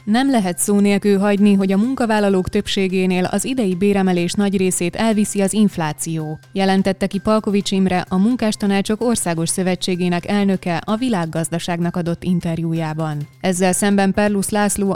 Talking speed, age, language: 135 wpm, 20-39, Hungarian